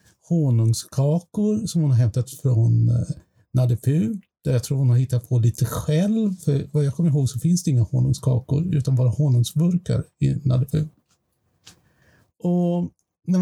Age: 50-69